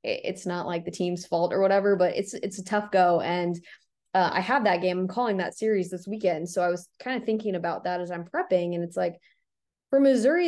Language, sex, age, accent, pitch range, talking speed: English, female, 20-39, American, 175-200 Hz, 240 wpm